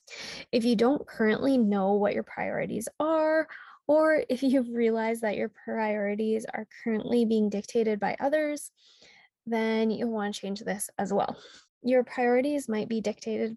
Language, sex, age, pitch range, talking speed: English, female, 10-29, 215-260 Hz, 155 wpm